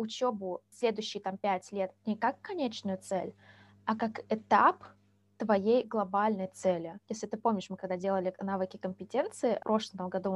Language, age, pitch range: Russian, 20-39, 195-230 Hz